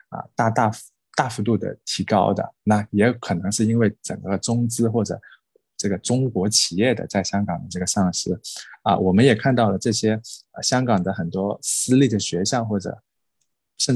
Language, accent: Chinese, native